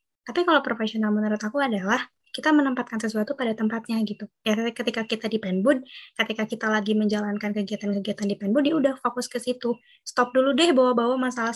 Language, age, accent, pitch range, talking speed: Indonesian, 20-39, native, 210-255 Hz, 180 wpm